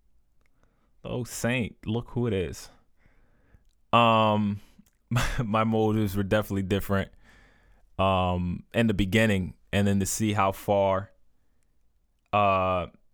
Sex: male